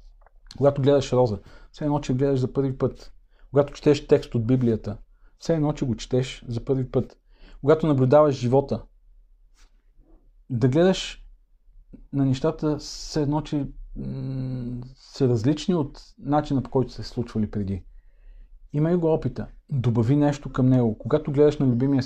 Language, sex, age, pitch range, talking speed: Bulgarian, male, 40-59, 115-140 Hz, 150 wpm